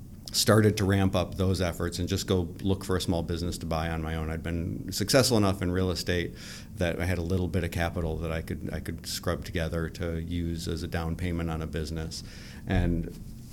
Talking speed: 225 wpm